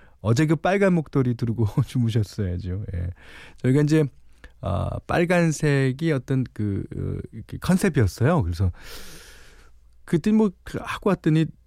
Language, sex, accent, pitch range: Korean, male, native, 95-155 Hz